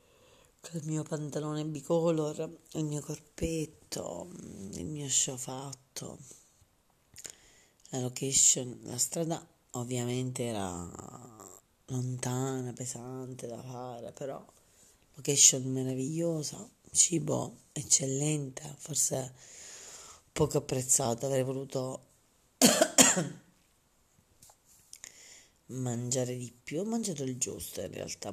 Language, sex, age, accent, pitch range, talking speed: Italian, female, 30-49, native, 130-160 Hz, 85 wpm